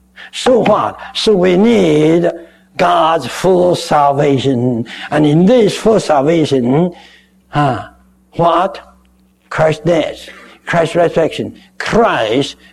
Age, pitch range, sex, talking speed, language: 60-79, 130-180 Hz, male, 95 wpm, English